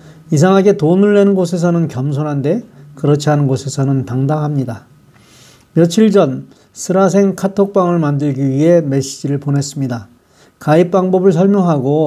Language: Korean